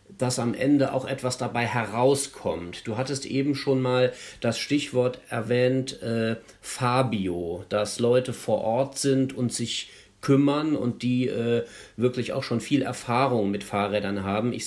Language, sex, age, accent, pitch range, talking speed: German, male, 40-59, German, 120-140 Hz, 150 wpm